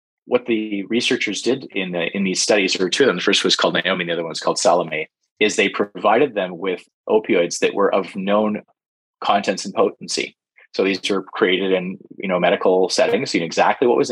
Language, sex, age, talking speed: English, male, 20-39, 220 wpm